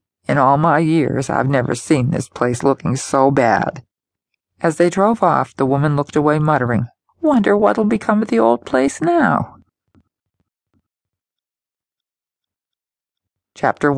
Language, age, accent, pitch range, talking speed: English, 50-69, American, 125-160 Hz, 130 wpm